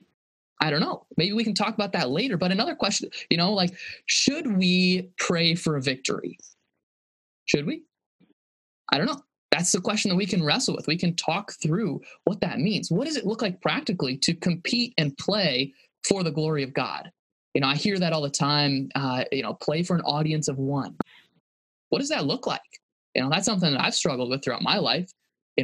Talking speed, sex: 215 wpm, male